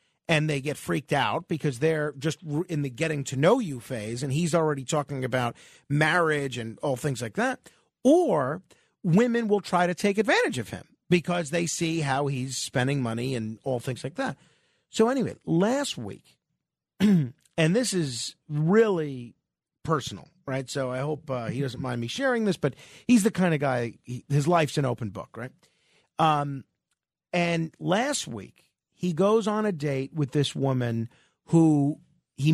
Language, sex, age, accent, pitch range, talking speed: English, male, 40-59, American, 130-170 Hz, 170 wpm